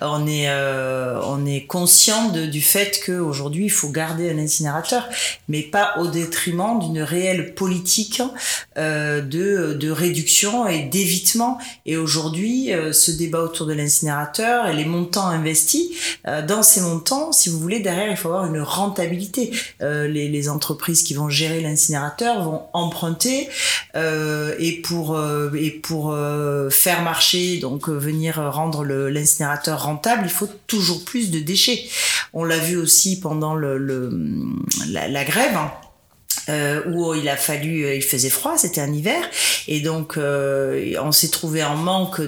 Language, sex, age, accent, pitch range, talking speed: French, female, 30-49, French, 150-190 Hz, 160 wpm